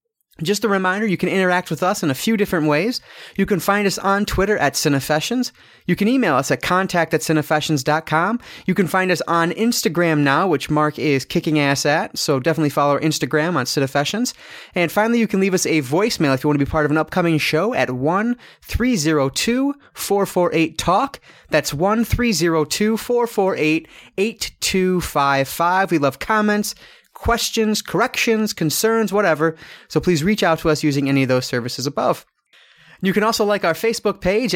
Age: 30-49